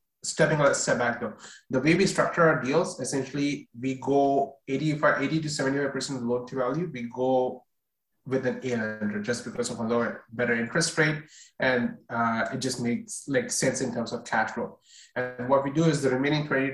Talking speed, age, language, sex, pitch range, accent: 210 wpm, 20-39, English, male, 125-155 Hz, Indian